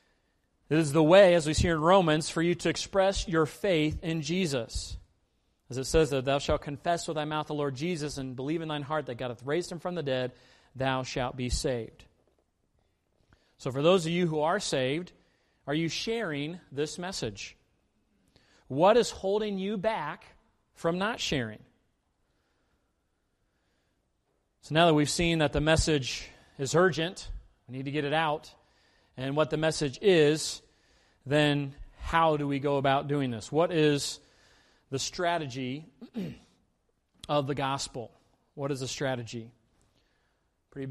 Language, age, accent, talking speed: English, 40-59, American, 160 wpm